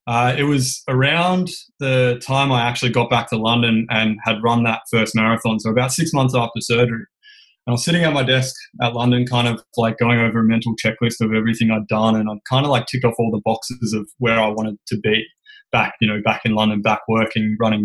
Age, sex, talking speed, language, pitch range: 20-39, male, 240 wpm, English, 115-130 Hz